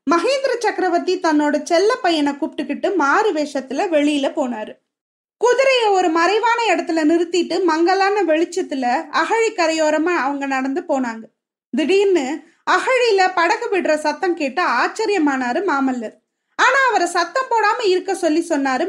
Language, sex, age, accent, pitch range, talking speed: Tamil, female, 20-39, native, 295-380 Hz, 120 wpm